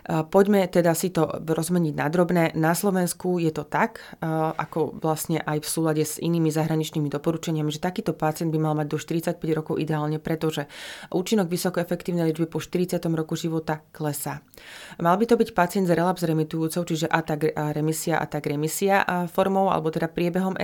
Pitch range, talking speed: 155-175 Hz, 170 wpm